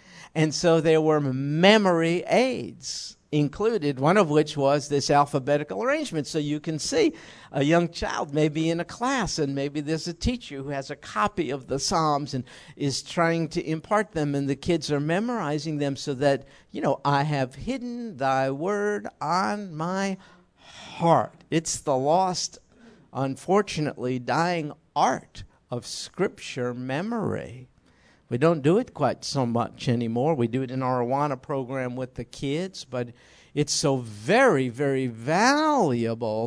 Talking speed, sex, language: 160 wpm, male, English